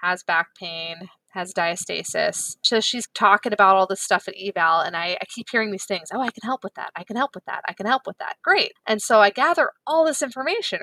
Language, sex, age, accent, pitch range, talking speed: English, female, 20-39, American, 185-235 Hz, 250 wpm